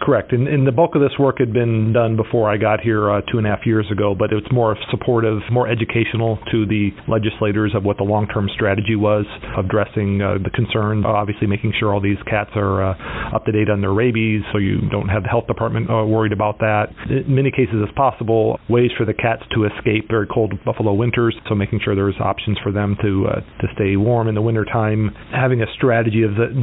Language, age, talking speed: English, 40-59, 230 wpm